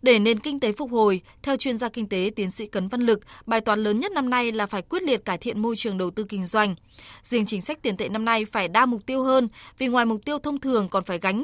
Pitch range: 200-250 Hz